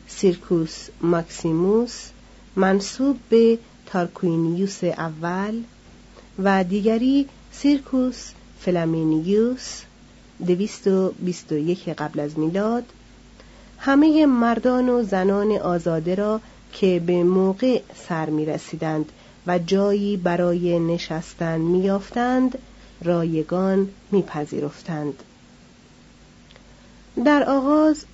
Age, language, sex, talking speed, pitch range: 40-59, Persian, female, 85 wpm, 175-225 Hz